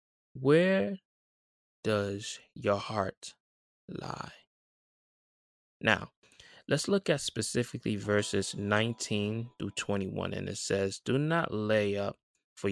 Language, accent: English, American